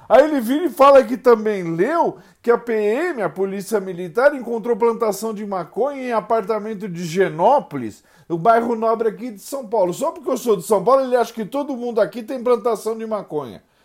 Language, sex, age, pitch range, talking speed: Portuguese, male, 50-69, 180-230 Hz, 200 wpm